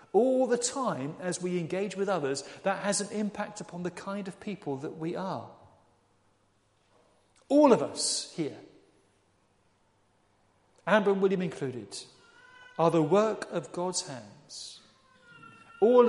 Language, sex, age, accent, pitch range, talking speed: English, male, 40-59, British, 140-195 Hz, 130 wpm